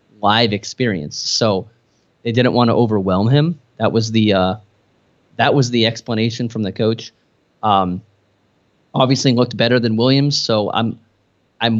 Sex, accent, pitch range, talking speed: male, American, 105-120 Hz, 145 wpm